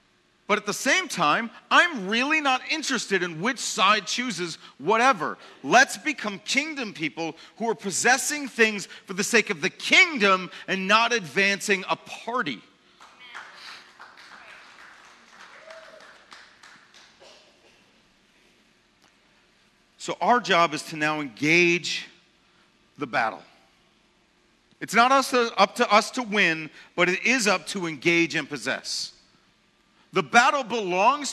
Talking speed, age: 120 wpm, 40-59